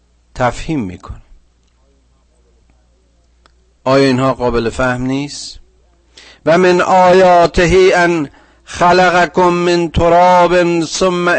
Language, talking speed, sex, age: Persian, 80 wpm, male, 50-69